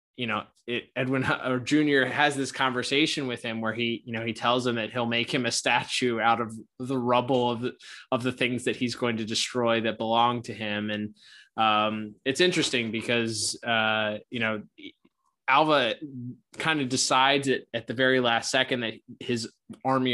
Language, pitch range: English, 110-125 Hz